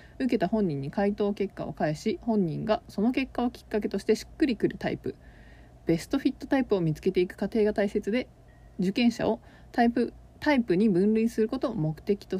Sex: female